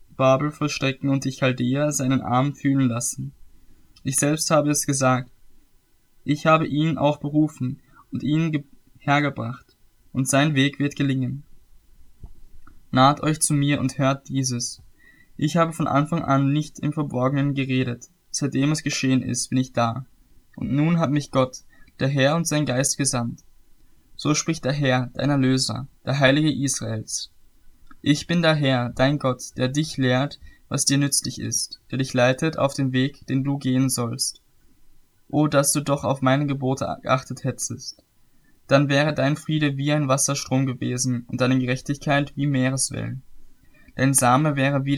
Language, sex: German, male